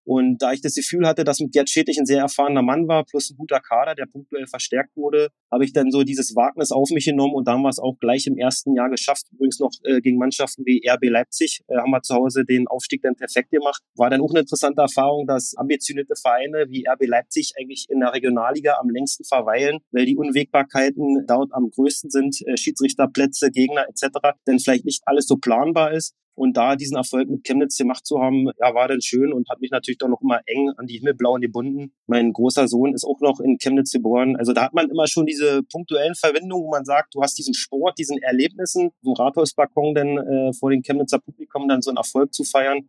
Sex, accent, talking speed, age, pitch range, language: male, German, 225 wpm, 30-49, 130-150 Hz, German